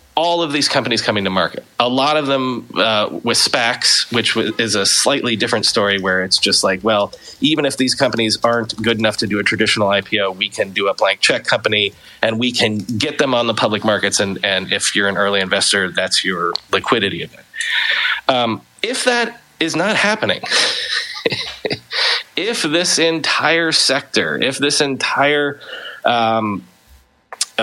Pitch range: 105-145 Hz